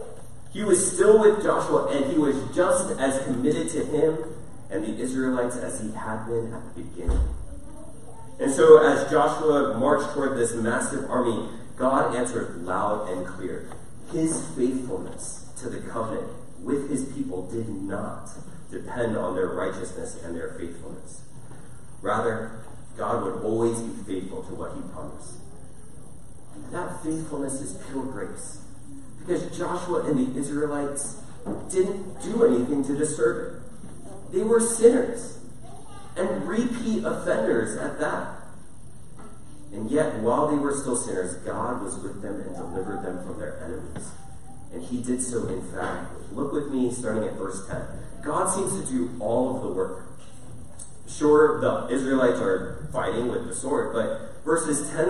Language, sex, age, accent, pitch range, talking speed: English, male, 30-49, American, 115-155 Hz, 150 wpm